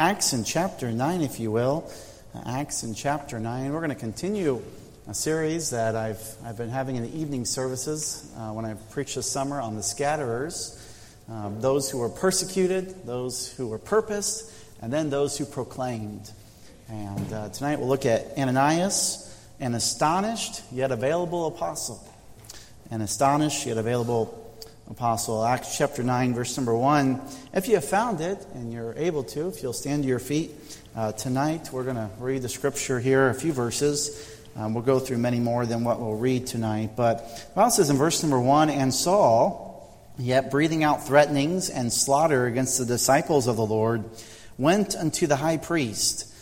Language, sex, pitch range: English, male, 115-145 Hz